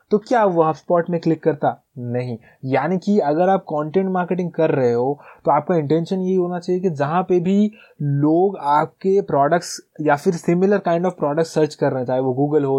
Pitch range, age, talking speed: 140-175 Hz, 20-39, 210 wpm